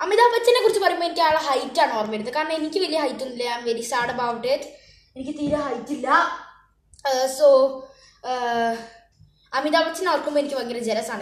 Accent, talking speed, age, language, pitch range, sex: native, 150 wpm, 20-39, Malayalam, 220-290 Hz, female